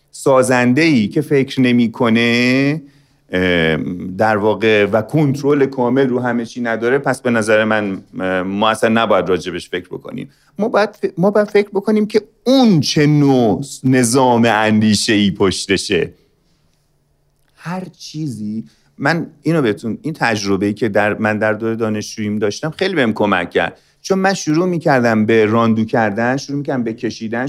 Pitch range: 110-155 Hz